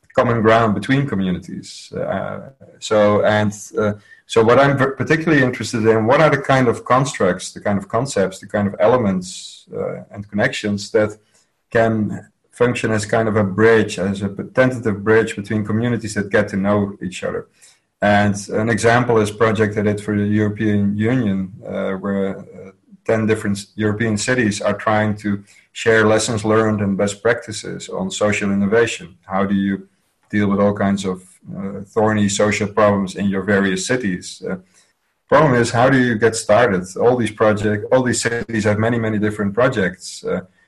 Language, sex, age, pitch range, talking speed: English, male, 30-49, 100-115 Hz, 175 wpm